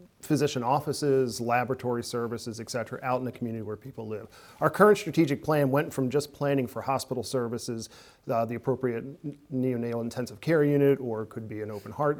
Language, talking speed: English, 185 wpm